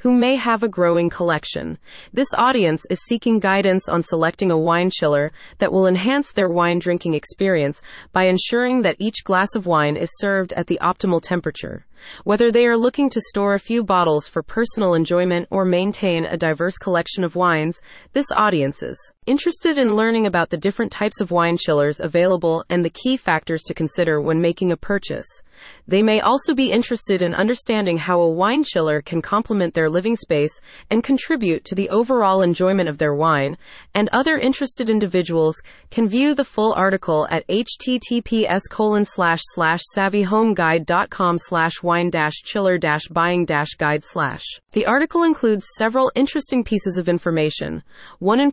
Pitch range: 170-225 Hz